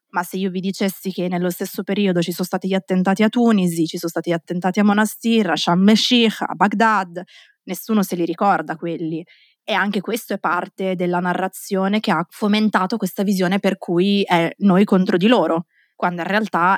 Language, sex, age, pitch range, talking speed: Italian, female, 20-39, 175-200 Hz, 195 wpm